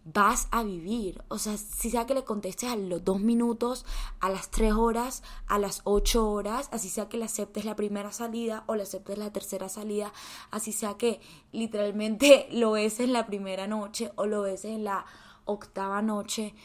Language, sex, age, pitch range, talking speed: Spanish, female, 10-29, 195-225 Hz, 190 wpm